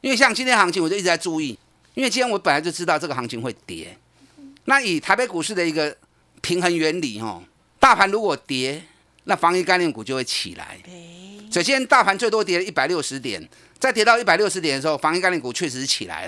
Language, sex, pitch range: Chinese, male, 140-220 Hz